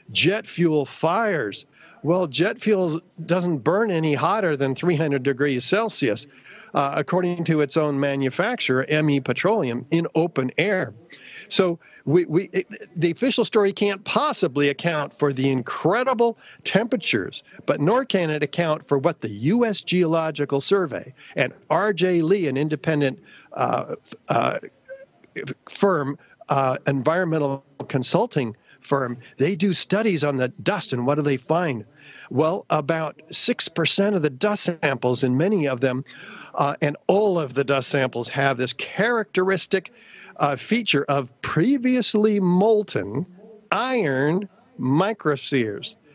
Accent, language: American, English